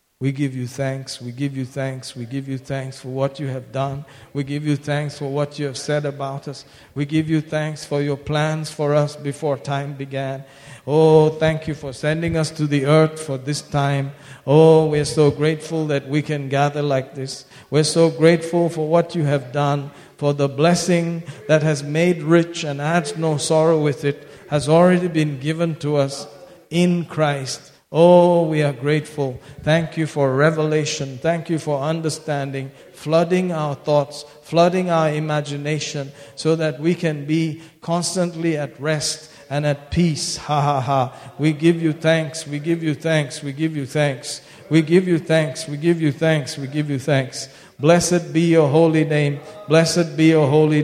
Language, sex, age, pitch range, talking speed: English, male, 50-69, 140-160 Hz, 190 wpm